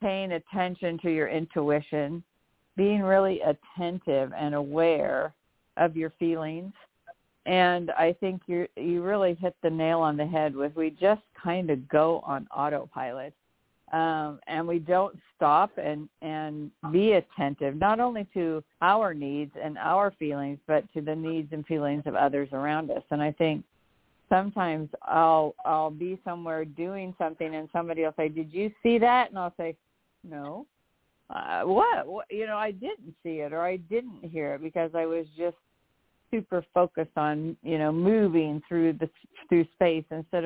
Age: 50-69